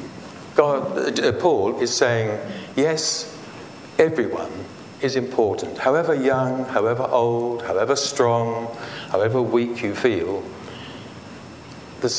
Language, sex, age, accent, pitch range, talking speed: English, male, 60-79, British, 105-140 Hz, 95 wpm